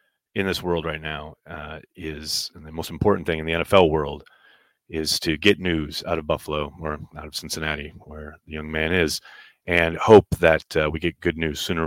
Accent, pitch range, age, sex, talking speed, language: American, 75-110 Hz, 30-49, male, 205 wpm, English